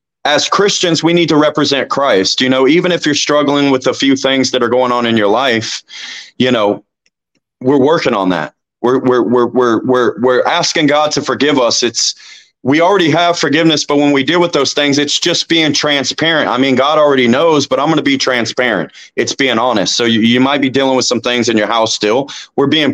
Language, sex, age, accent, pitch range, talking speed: English, male, 30-49, American, 130-160 Hz, 225 wpm